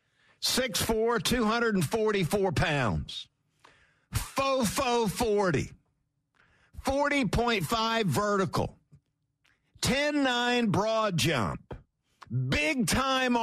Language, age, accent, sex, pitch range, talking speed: English, 50-69, American, male, 140-230 Hz, 60 wpm